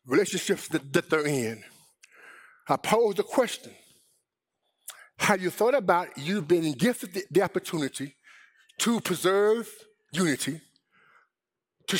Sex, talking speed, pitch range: male, 115 wpm, 155-210 Hz